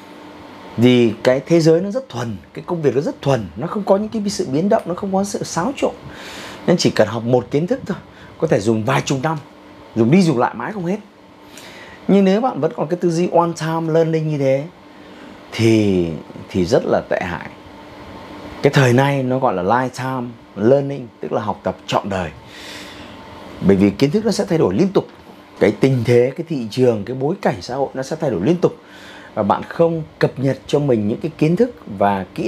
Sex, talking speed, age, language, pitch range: male, 225 wpm, 30-49, Vietnamese, 115-170 Hz